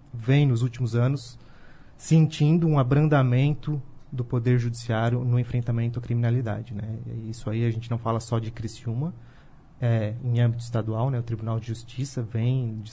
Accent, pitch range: Brazilian, 115-135 Hz